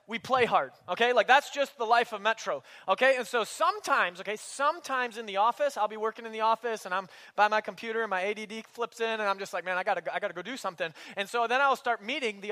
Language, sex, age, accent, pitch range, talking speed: English, male, 20-39, American, 210-265 Hz, 265 wpm